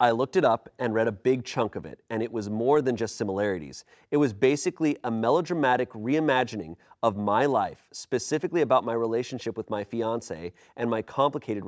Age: 30-49